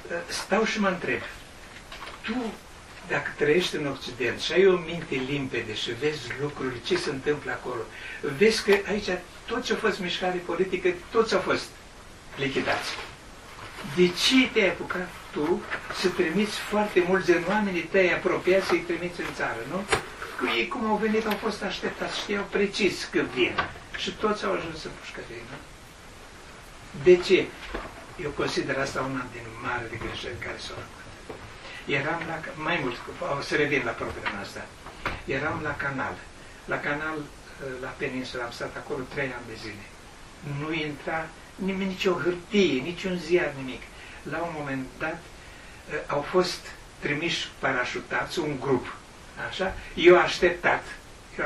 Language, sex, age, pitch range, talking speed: Romanian, male, 60-79, 145-200 Hz, 150 wpm